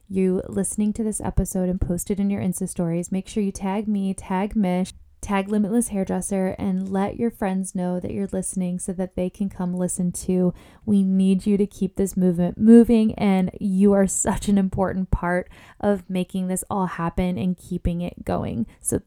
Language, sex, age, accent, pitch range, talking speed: English, female, 10-29, American, 180-215 Hz, 195 wpm